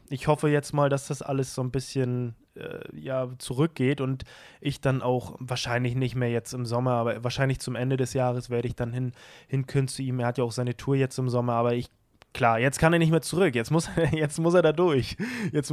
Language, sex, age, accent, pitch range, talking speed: German, male, 20-39, German, 130-155 Hz, 240 wpm